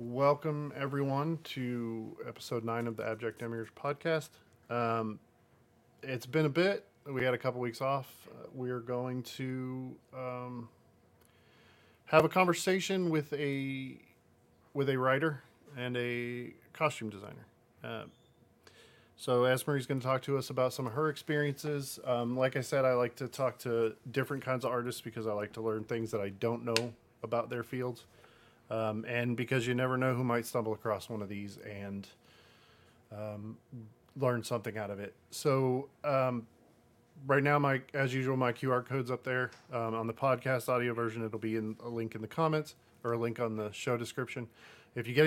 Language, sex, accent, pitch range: English, male, American, 115-135 Hz